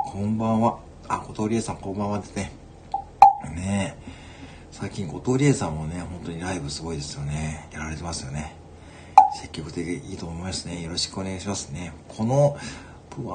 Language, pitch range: Japanese, 80-105 Hz